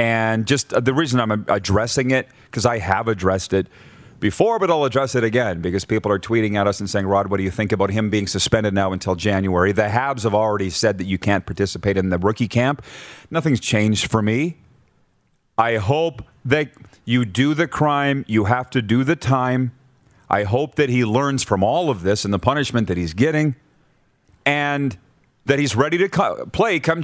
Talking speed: 200 wpm